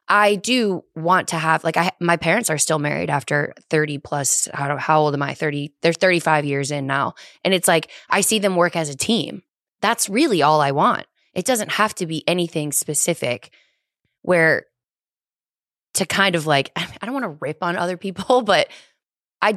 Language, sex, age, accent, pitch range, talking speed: English, female, 20-39, American, 155-200 Hz, 195 wpm